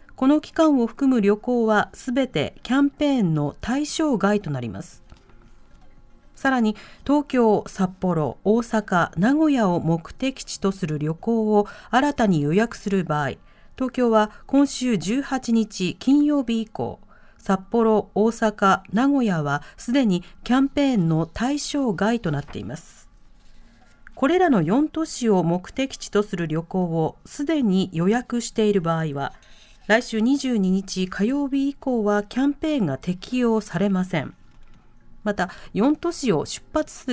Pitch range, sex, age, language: 190-265 Hz, female, 40-59, Japanese